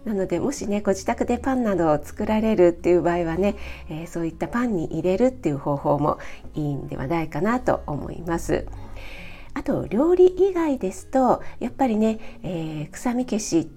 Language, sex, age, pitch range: Japanese, female, 40-59, 165-250 Hz